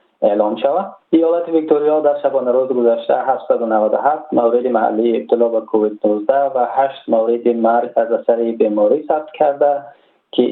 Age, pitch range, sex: 20-39, 115-140 Hz, male